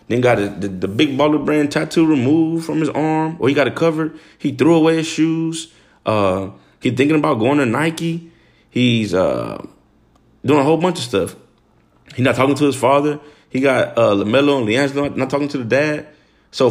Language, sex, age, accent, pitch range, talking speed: English, male, 30-49, American, 110-145 Hz, 200 wpm